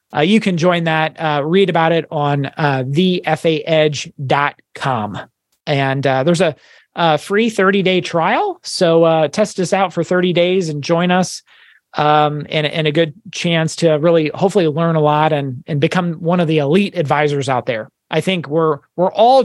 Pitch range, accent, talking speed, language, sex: 150-185 Hz, American, 180 wpm, English, male